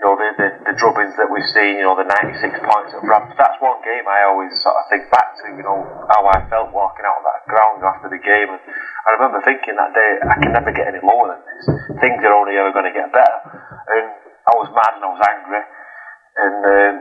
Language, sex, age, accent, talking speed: English, male, 30-49, British, 245 wpm